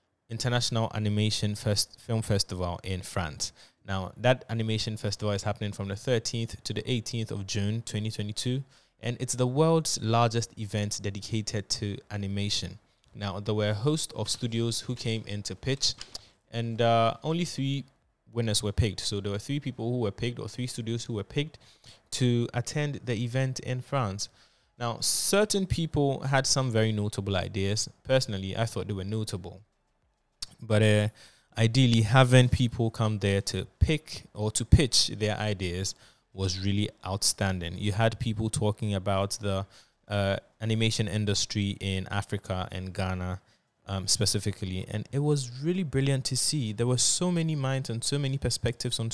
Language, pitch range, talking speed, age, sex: English, 100-120 Hz, 160 wpm, 20-39, male